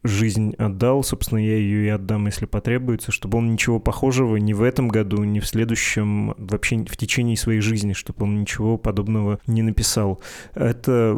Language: Russian